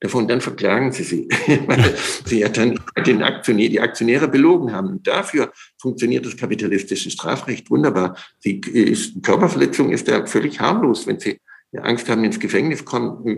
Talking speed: 155 wpm